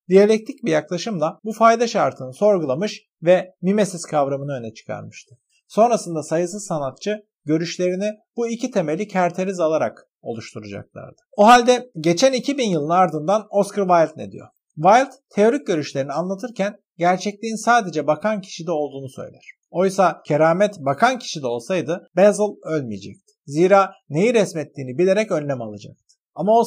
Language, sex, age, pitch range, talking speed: Turkish, male, 50-69, 145-205 Hz, 135 wpm